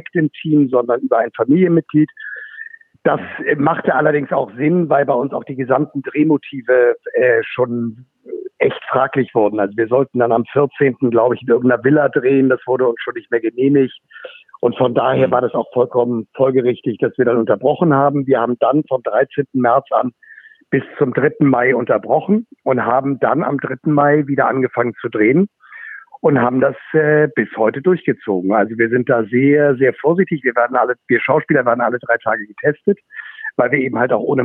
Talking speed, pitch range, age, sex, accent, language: 190 wpm, 130-170 Hz, 60-79, male, German, German